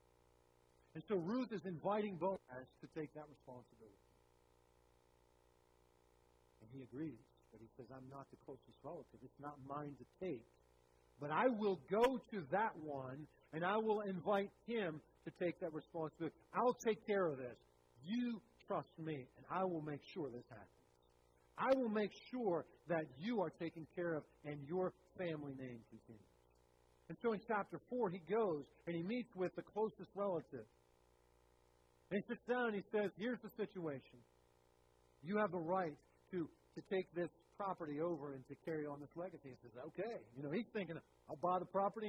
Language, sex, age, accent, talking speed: English, male, 50-69, American, 175 wpm